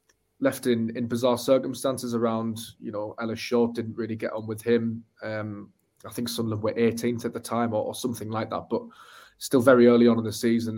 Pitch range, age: 110-120 Hz, 20-39